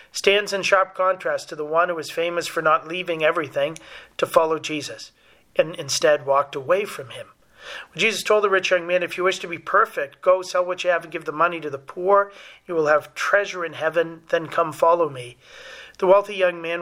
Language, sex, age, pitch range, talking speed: English, male, 40-59, 155-185 Hz, 220 wpm